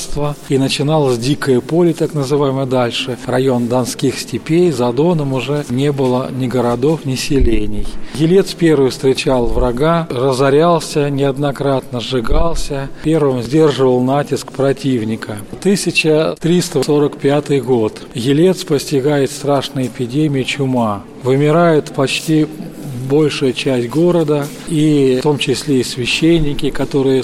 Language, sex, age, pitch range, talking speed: Russian, male, 40-59, 130-155 Hz, 110 wpm